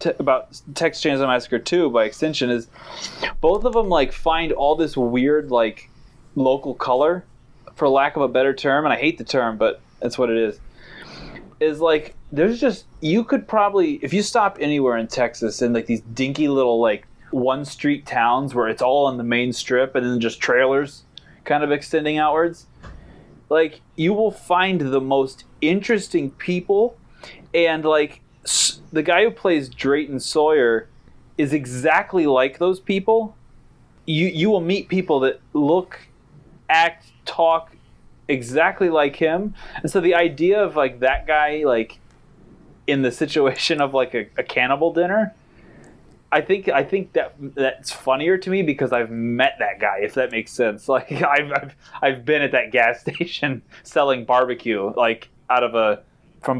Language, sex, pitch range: English, male, 125-170 Hz